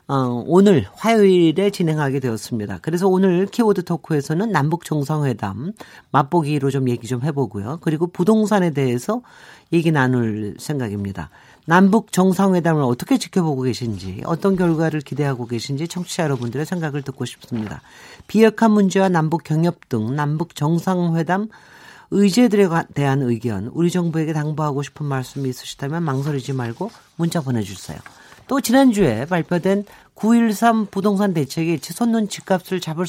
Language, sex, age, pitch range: Korean, male, 40-59, 135-190 Hz